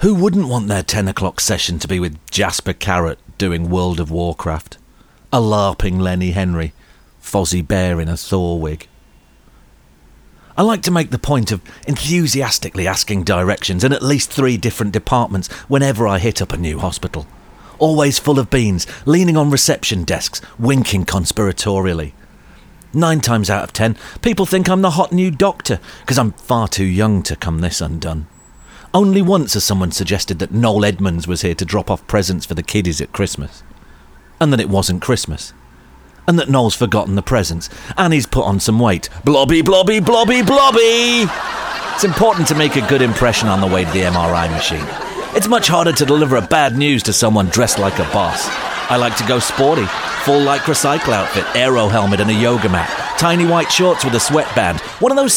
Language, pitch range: English, 90-140 Hz